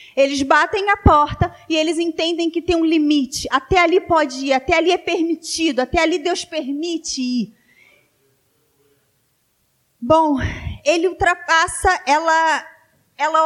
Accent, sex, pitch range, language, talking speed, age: Brazilian, female, 265-345 Hz, Portuguese, 130 wpm, 30-49